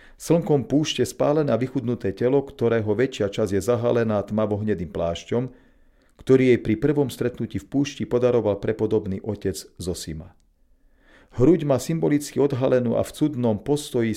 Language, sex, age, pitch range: Slovak, male, 40-59, 105-130 Hz